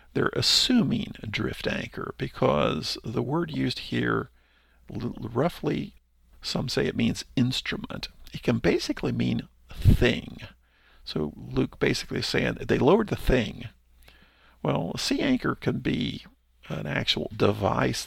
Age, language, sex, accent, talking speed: 50-69, English, male, American, 125 wpm